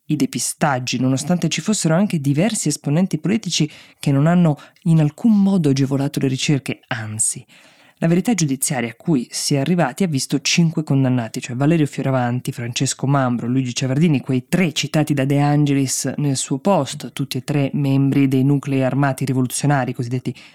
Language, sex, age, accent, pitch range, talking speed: Italian, female, 20-39, native, 130-155 Hz, 165 wpm